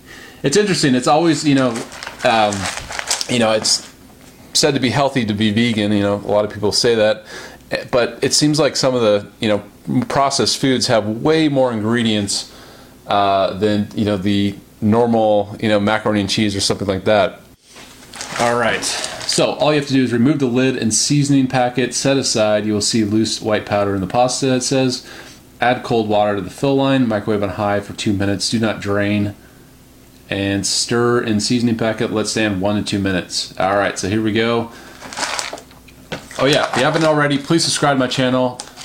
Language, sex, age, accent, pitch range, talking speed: English, male, 30-49, American, 105-130 Hz, 200 wpm